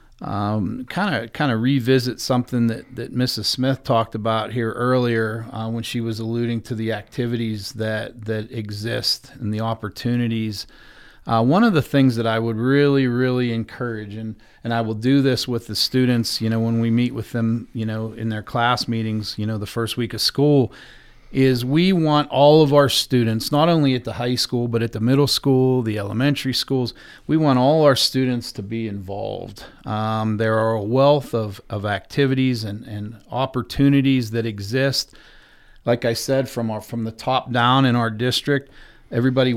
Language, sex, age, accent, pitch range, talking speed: English, male, 40-59, American, 110-130 Hz, 190 wpm